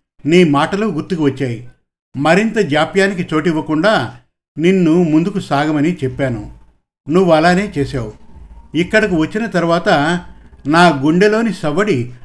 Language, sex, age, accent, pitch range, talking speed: Telugu, male, 50-69, native, 140-180 Hz, 100 wpm